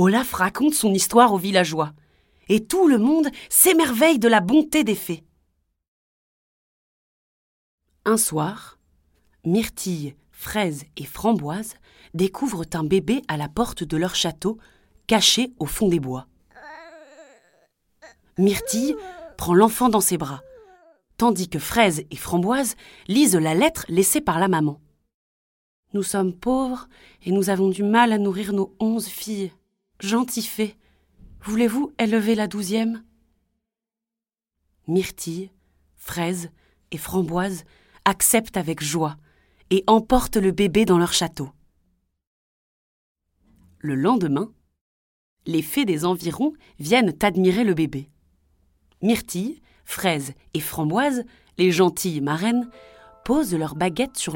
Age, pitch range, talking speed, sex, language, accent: 30-49, 155-225 Hz, 120 wpm, female, French, French